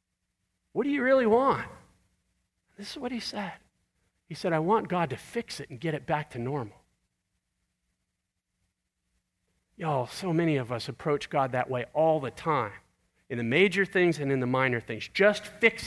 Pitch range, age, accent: 130-185 Hz, 40-59, American